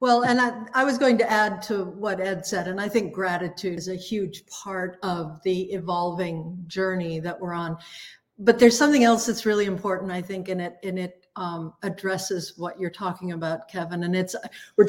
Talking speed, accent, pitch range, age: 200 wpm, American, 175-210 Hz, 60-79